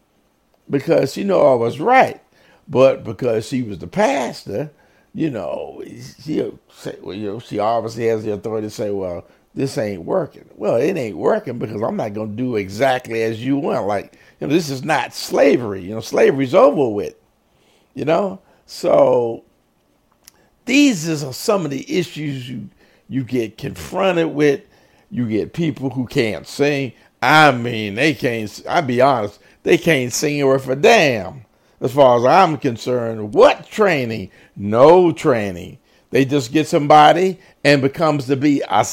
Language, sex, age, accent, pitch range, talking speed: English, male, 50-69, American, 110-150 Hz, 165 wpm